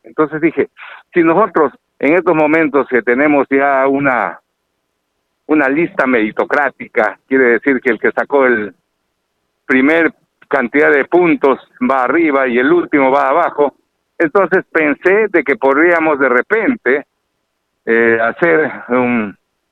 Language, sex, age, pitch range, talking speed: Spanish, male, 60-79, 115-155 Hz, 130 wpm